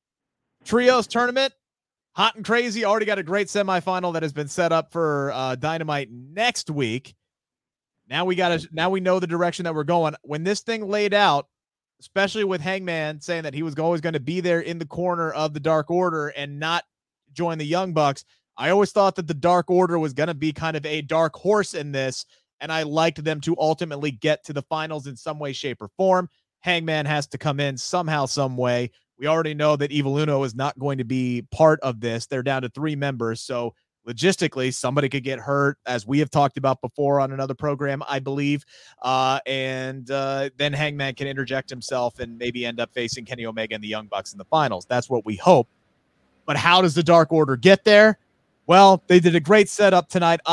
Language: English